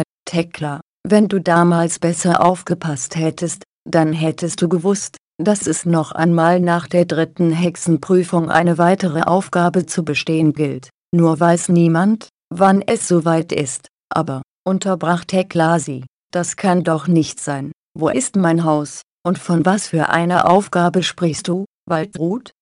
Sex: female